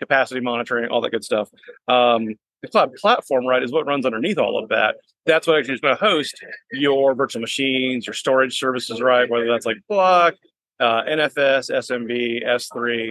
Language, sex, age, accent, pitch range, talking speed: English, male, 30-49, American, 120-140 Hz, 185 wpm